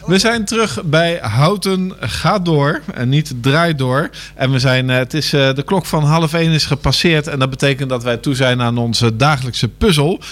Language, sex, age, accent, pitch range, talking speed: Dutch, male, 50-69, Dutch, 120-155 Hz, 200 wpm